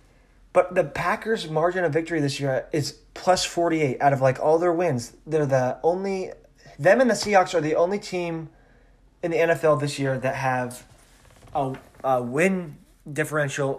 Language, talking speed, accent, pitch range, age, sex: English, 175 wpm, American, 130-165 Hz, 20-39, male